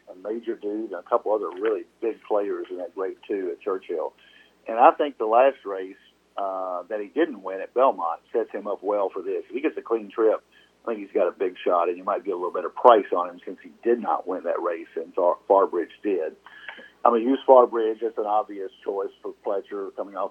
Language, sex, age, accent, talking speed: English, male, 50-69, American, 240 wpm